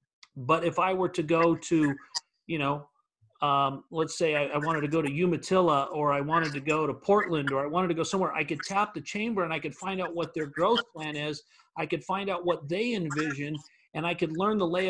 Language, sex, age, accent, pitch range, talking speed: English, male, 40-59, American, 155-190 Hz, 240 wpm